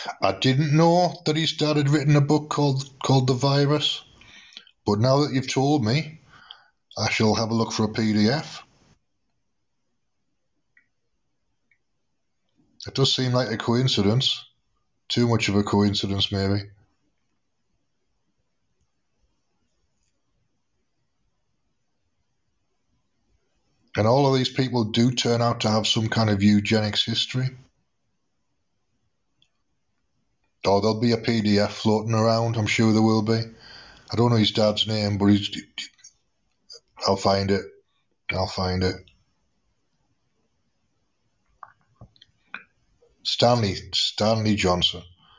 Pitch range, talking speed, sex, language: 105-130 Hz, 110 wpm, male, English